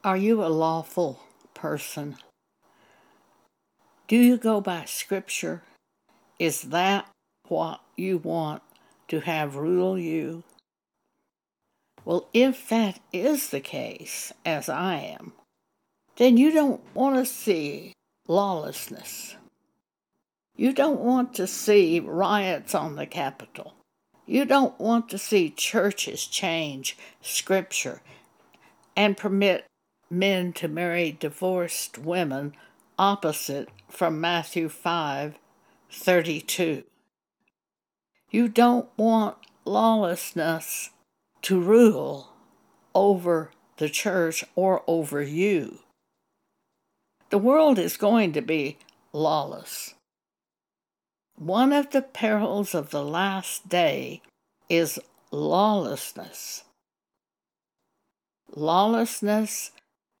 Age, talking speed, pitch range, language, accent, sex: 60-79, 95 wpm, 165-225 Hz, English, American, female